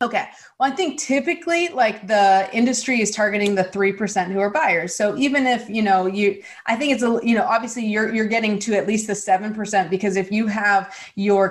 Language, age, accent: English, 30-49, American